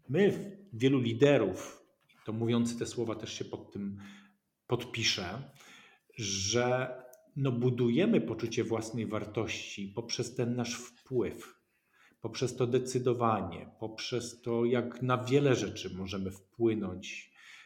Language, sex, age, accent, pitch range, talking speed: Polish, male, 40-59, native, 110-130 Hz, 110 wpm